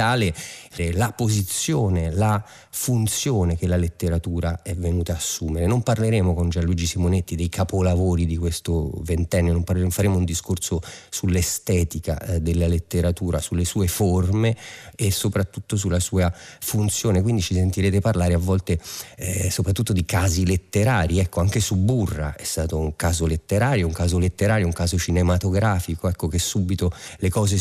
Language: Italian